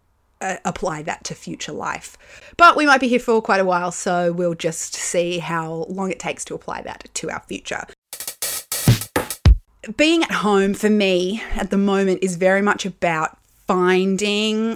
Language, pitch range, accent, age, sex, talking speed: English, 170-215 Hz, Australian, 20-39, female, 170 wpm